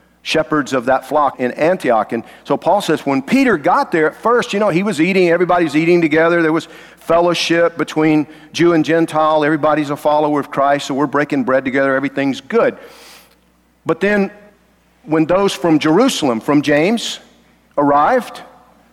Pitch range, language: 140-195 Hz, English